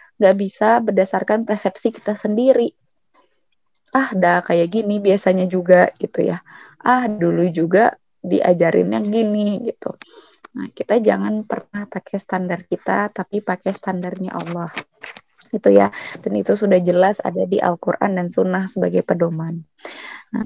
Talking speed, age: 130 wpm, 20-39